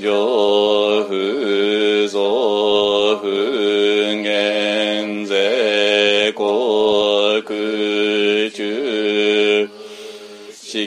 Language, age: Japanese, 40-59